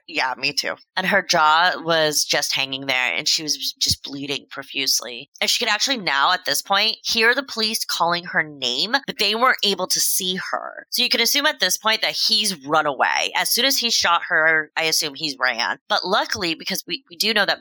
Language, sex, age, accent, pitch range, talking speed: English, female, 30-49, American, 155-225 Hz, 225 wpm